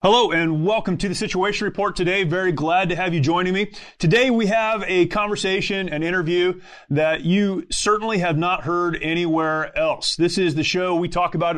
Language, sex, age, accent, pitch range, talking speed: English, male, 30-49, American, 155-185 Hz, 190 wpm